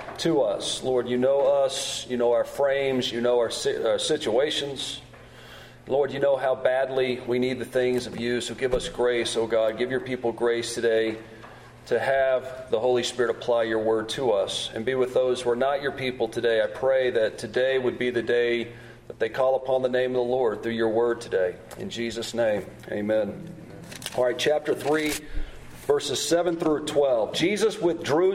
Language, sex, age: English, male, 40-59